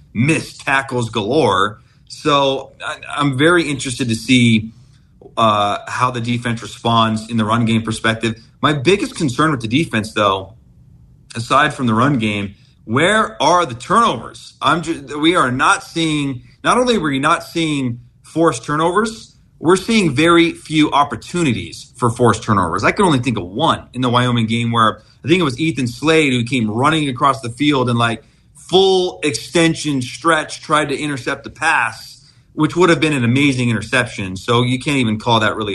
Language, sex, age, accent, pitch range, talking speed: English, male, 40-59, American, 115-150 Hz, 180 wpm